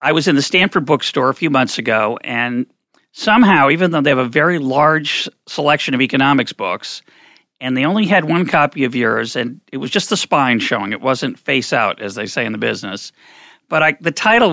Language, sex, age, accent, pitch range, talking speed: English, male, 40-59, American, 125-165 Hz, 215 wpm